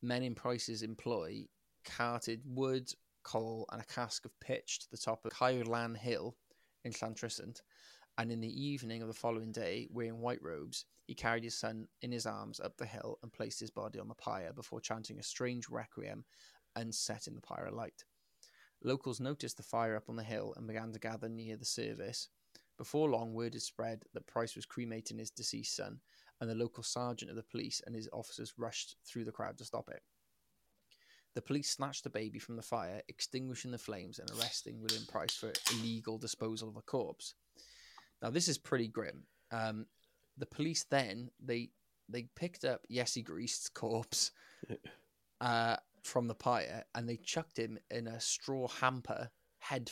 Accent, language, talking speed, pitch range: British, English, 185 wpm, 115-125 Hz